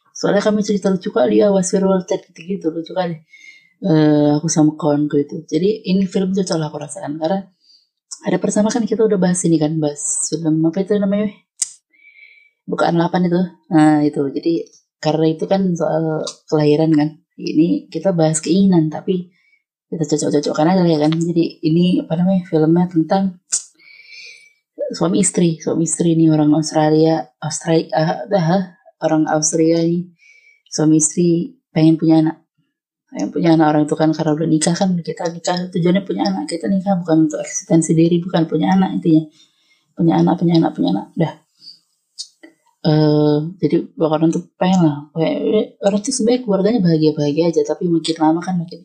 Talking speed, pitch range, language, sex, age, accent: 160 wpm, 155-195 Hz, Indonesian, female, 20-39, native